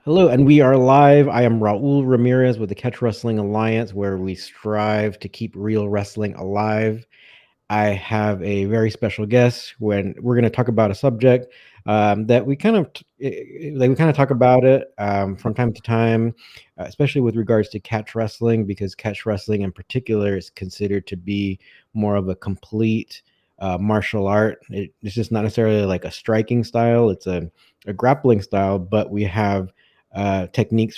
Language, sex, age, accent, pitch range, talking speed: English, male, 30-49, American, 100-115 Hz, 185 wpm